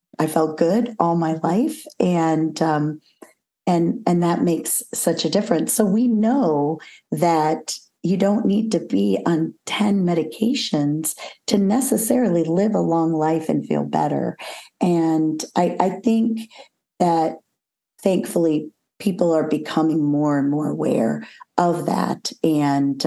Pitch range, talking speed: 155-185 Hz, 135 wpm